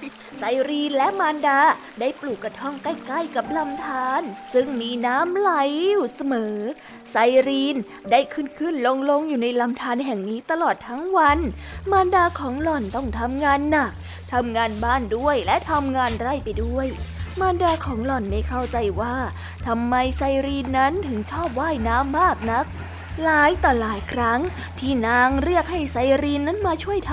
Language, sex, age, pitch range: Thai, female, 20-39, 235-300 Hz